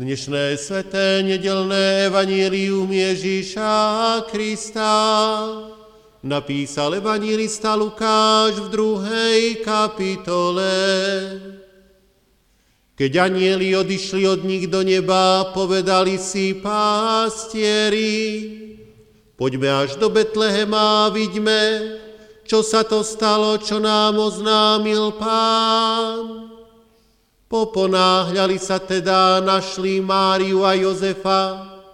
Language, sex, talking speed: Slovak, male, 85 wpm